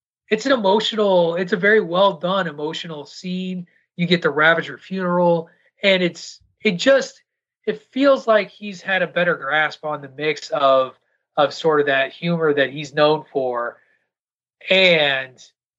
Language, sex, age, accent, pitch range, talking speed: English, male, 30-49, American, 135-180 Hz, 155 wpm